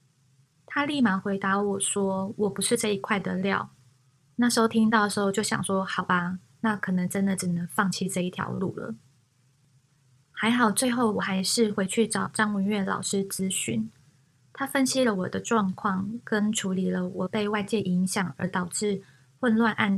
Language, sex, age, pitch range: Chinese, female, 20-39, 180-220 Hz